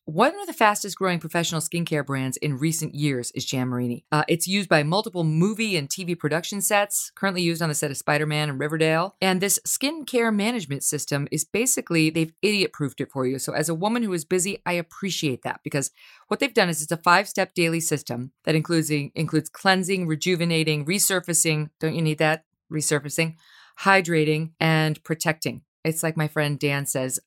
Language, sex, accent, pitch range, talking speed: English, female, American, 155-195 Hz, 185 wpm